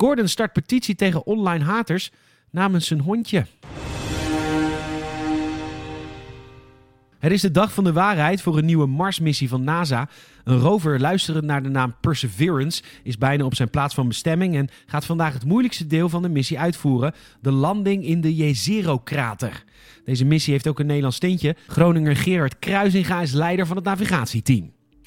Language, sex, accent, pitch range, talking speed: Dutch, male, Dutch, 135-180 Hz, 160 wpm